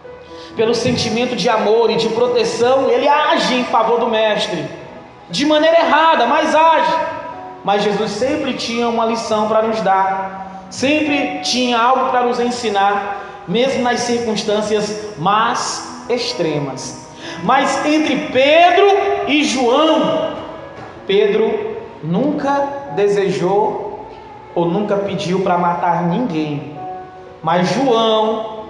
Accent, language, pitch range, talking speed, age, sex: Brazilian, Portuguese, 215-285 Hz, 115 wpm, 20-39, male